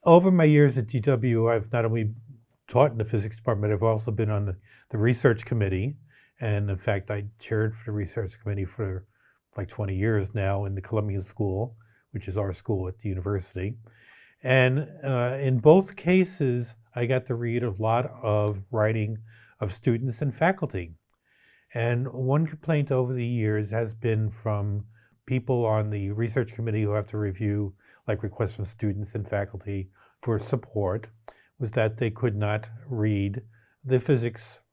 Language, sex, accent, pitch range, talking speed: English, male, American, 105-125 Hz, 170 wpm